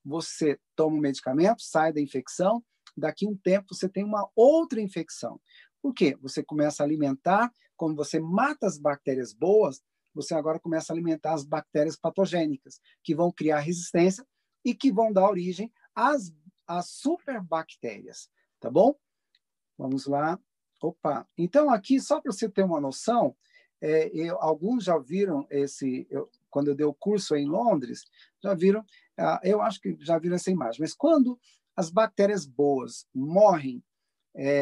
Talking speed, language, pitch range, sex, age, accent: 155 wpm, Portuguese, 155-220 Hz, male, 40-59, Brazilian